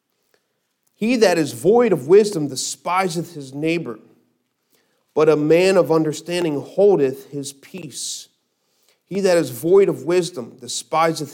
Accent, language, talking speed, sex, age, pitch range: American, English, 125 wpm, male, 40-59, 120-150 Hz